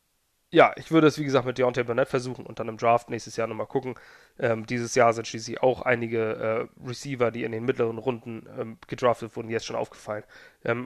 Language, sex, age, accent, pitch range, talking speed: German, male, 30-49, German, 115-140 Hz, 215 wpm